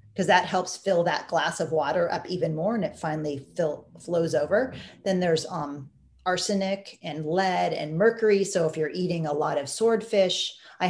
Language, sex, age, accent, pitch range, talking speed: English, female, 40-59, American, 155-195 Hz, 180 wpm